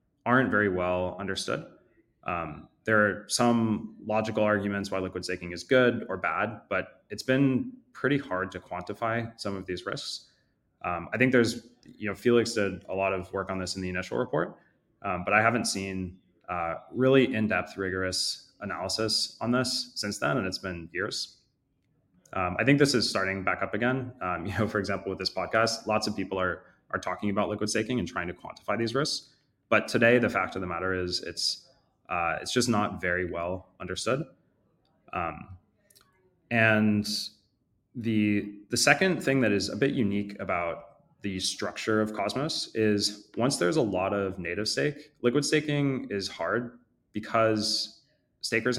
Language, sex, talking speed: English, male, 175 wpm